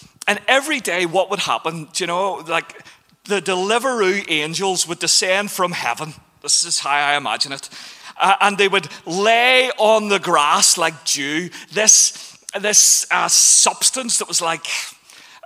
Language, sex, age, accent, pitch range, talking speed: English, male, 30-49, British, 170-230 Hz, 155 wpm